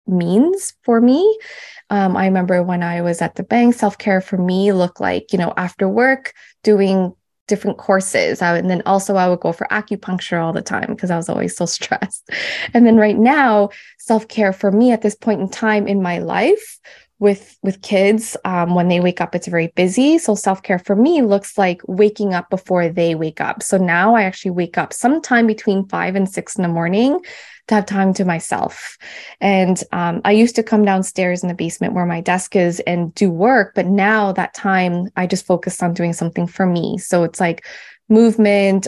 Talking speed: 200 wpm